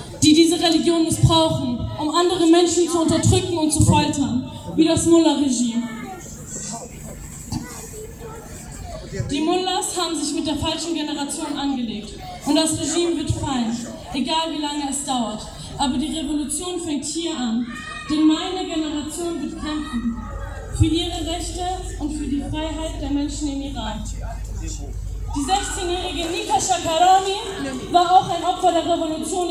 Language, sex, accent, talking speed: German, female, German, 135 wpm